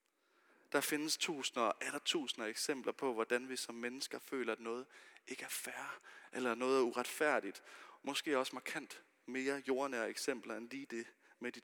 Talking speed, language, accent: 170 wpm, Danish, native